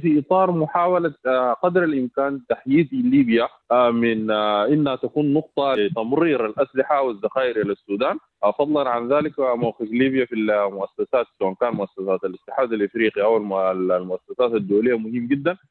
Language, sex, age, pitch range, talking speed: Arabic, male, 20-39, 120-155 Hz, 120 wpm